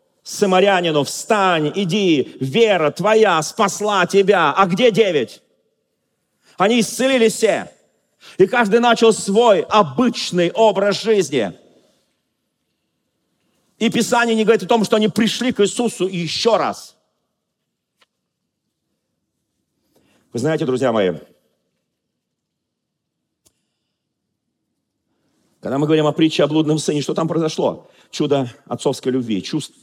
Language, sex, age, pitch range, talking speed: Russian, male, 40-59, 155-210 Hz, 105 wpm